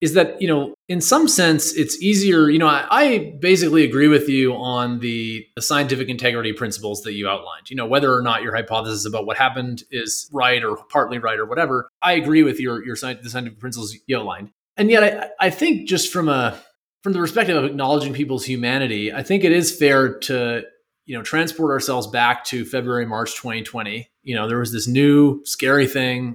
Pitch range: 120-155 Hz